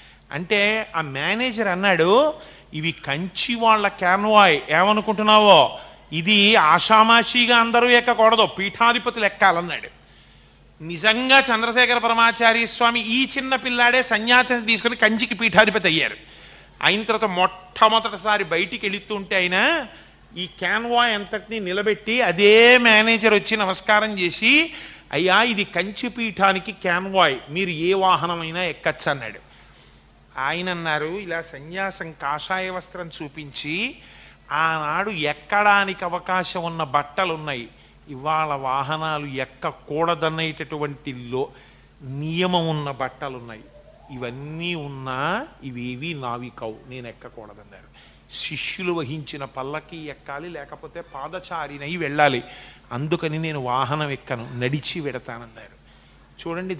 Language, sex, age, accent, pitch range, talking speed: Telugu, male, 30-49, native, 145-215 Hz, 95 wpm